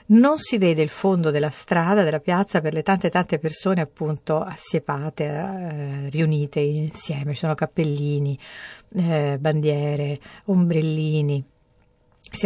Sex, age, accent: female, 50-69, native